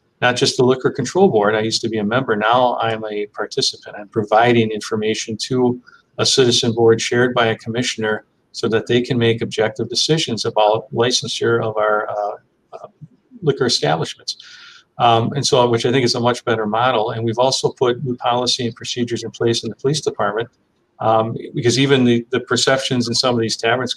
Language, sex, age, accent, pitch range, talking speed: English, male, 40-59, American, 115-130 Hz, 195 wpm